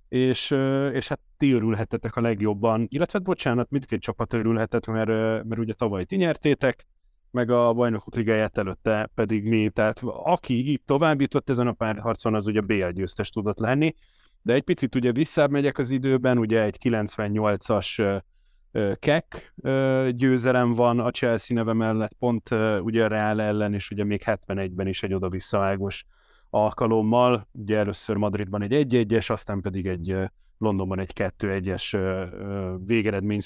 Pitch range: 105-130 Hz